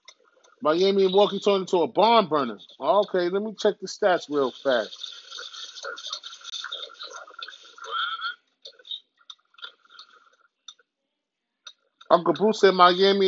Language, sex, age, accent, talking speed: English, male, 30-49, American, 90 wpm